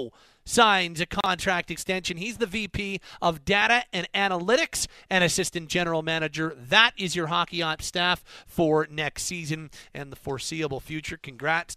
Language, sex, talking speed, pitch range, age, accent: English, male, 145 wpm, 145-180 Hz, 40-59, American